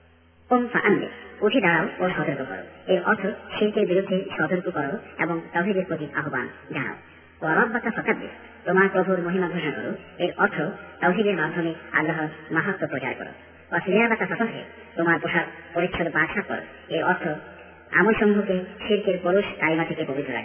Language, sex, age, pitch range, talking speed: Bengali, male, 50-69, 150-190 Hz, 80 wpm